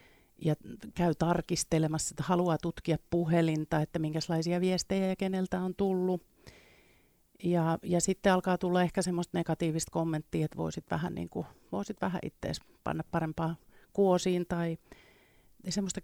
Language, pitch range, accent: Finnish, 160-190 Hz, native